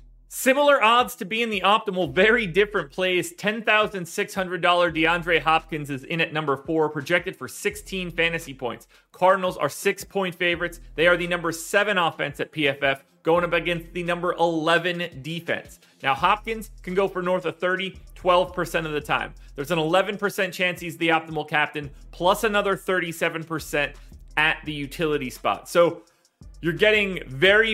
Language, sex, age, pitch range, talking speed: English, male, 30-49, 150-190 Hz, 155 wpm